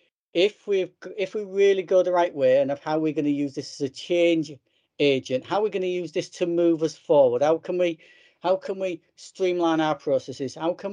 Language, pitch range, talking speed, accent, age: English, 135-180 Hz, 230 wpm, British, 40-59